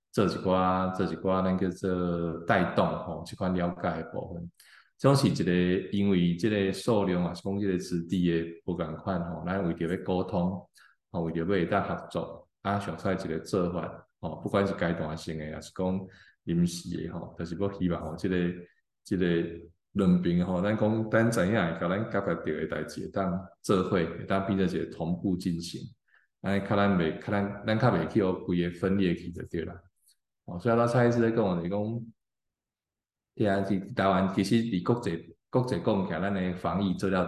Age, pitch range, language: 20-39, 85-100 Hz, Chinese